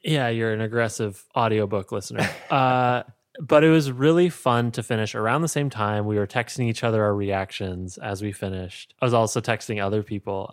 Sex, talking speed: male, 195 wpm